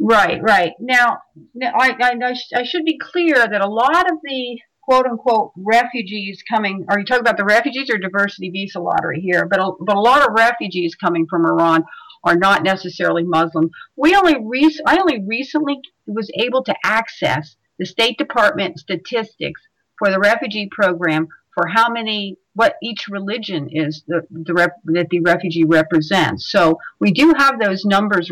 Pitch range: 175-240 Hz